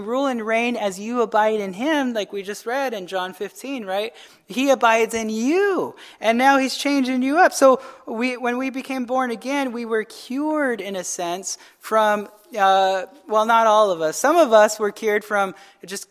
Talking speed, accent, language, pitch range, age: 195 wpm, American, English, 200-255 Hz, 20-39